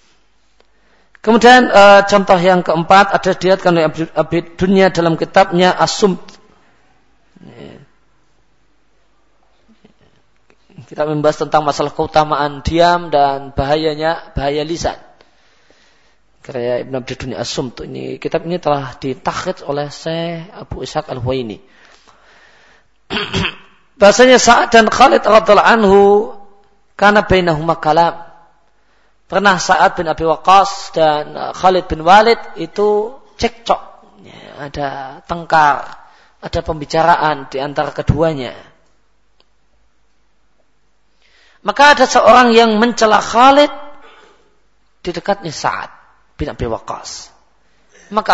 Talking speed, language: 90 wpm, Malay